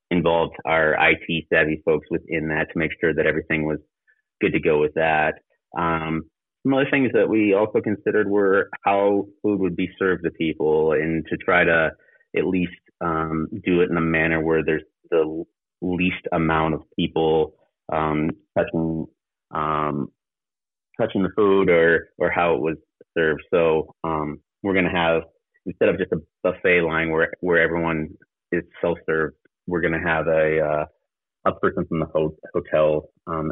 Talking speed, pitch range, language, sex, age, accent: 165 wpm, 80-85 Hz, English, male, 30-49, American